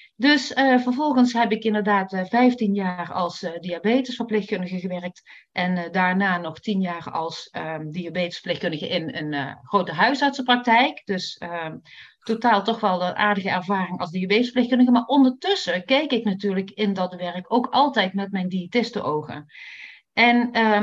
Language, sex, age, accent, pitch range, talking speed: Dutch, female, 40-59, Dutch, 185-245 Hz, 145 wpm